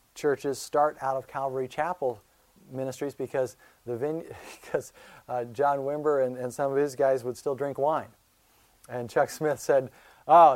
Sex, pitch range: male, 130-155 Hz